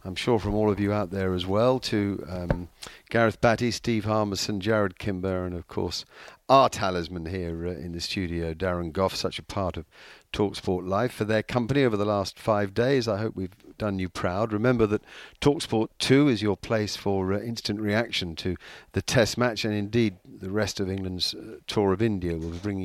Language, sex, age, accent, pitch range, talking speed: English, male, 50-69, British, 95-125 Hz, 200 wpm